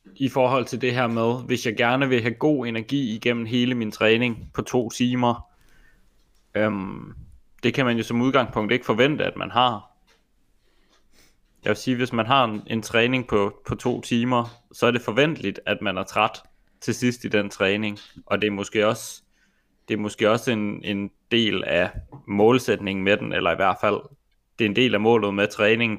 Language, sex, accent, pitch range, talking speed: Danish, male, native, 105-125 Hz, 200 wpm